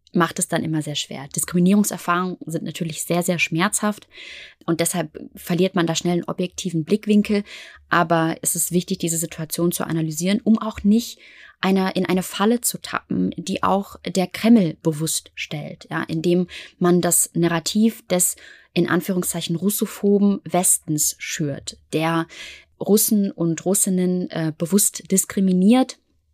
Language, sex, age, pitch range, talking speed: German, female, 20-39, 170-205 Hz, 140 wpm